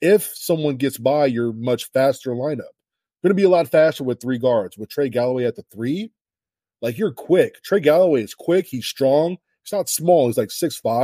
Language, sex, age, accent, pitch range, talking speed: English, male, 20-39, American, 120-150 Hz, 205 wpm